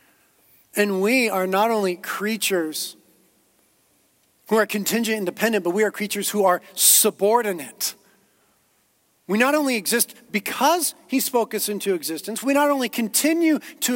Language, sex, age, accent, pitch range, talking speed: English, male, 40-59, American, 195-280 Hz, 140 wpm